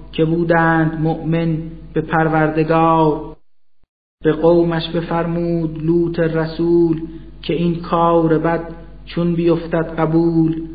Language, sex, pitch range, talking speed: Persian, male, 155-165 Hz, 95 wpm